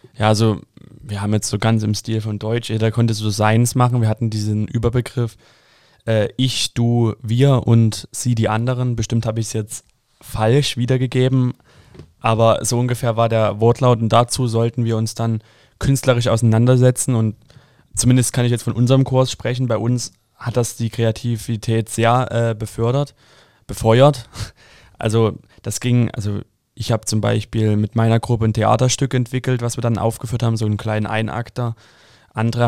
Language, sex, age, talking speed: German, male, 20-39, 170 wpm